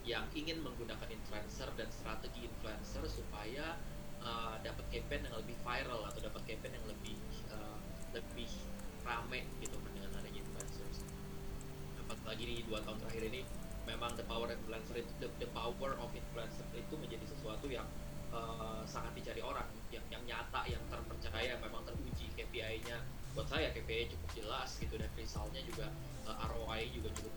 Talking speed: 160 wpm